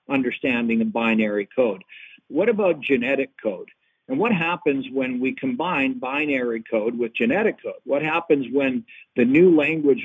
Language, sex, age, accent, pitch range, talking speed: English, male, 60-79, American, 130-185 Hz, 150 wpm